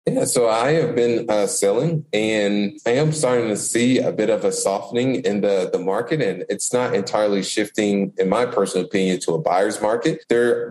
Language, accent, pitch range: English, American, 95-145 Hz